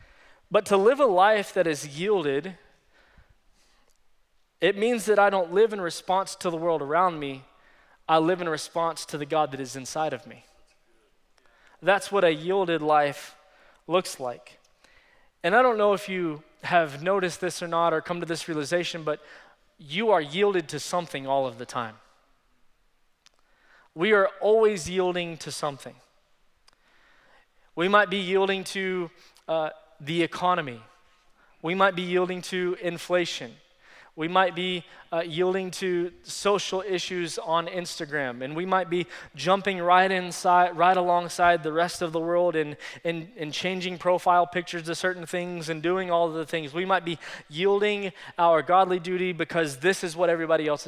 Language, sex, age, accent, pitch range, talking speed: English, male, 20-39, American, 155-185 Hz, 165 wpm